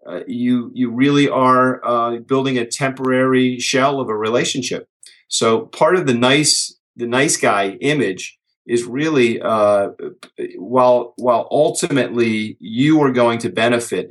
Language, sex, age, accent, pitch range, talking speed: English, male, 40-59, American, 110-130 Hz, 140 wpm